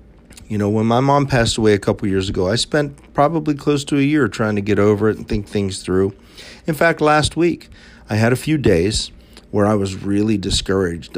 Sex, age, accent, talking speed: male, 50-69, American, 220 wpm